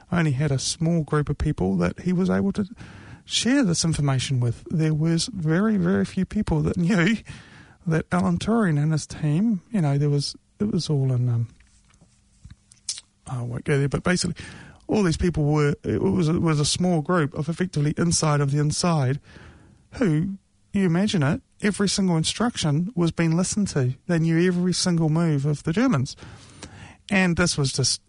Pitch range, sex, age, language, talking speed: 135-170 Hz, male, 30-49, English, 180 wpm